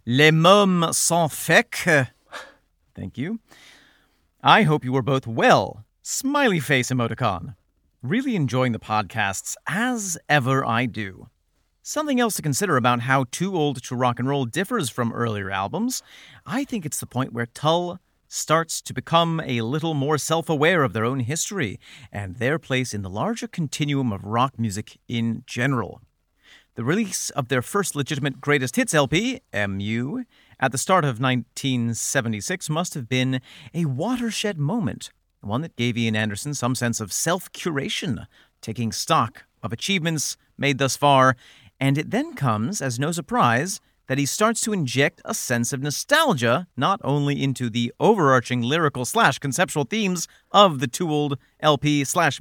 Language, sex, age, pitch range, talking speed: English, male, 40-59, 120-170 Hz, 160 wpm